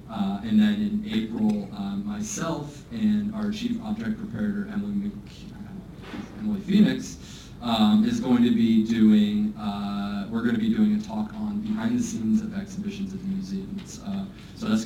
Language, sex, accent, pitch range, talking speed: English, male, American, 195-220 Hz, 165 wpm